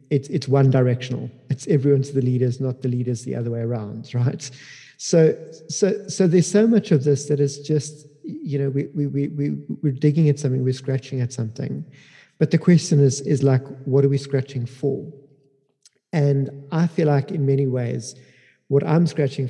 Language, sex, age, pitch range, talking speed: English, male, 50-69, 125-145 Hz, 190 wpm